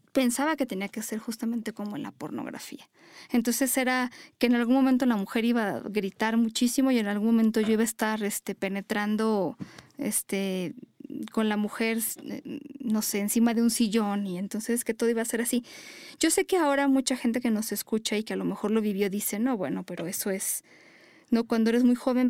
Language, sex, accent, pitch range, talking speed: Spanish, female, Mexican, 215-255 Hz, 200 wpm